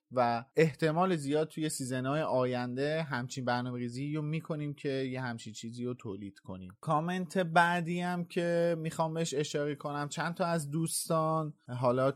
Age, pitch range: 30-49, 125-150 Hz